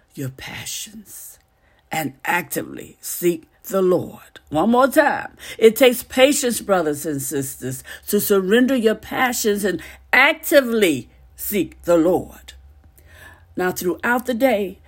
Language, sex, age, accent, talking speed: English, female, 60-79, American, 115 wpm